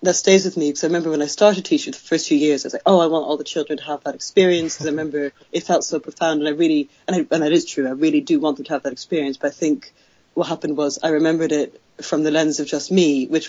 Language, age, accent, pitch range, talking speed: English, 30-49, British, 145-175 Hz, 300 wpm